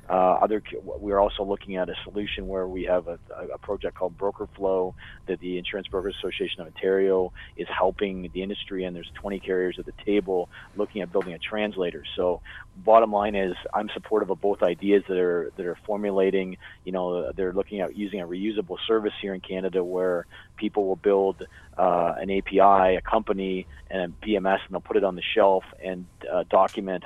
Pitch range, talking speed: 90-105 Hz, 195 wpm